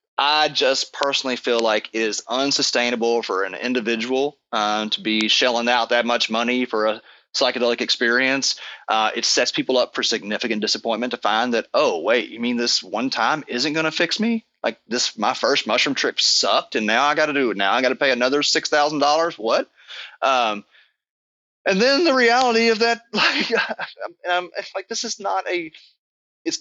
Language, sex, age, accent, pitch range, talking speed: English, male, 30-49, American, 115-160 Hz, 195 wpm